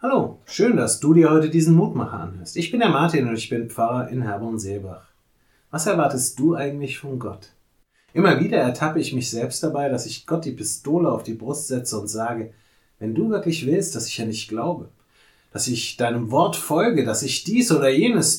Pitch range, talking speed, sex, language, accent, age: 110-140 Hz, 205 wpm, male, German, German, 30-49